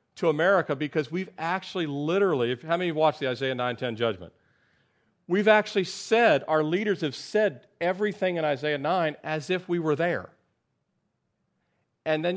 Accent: American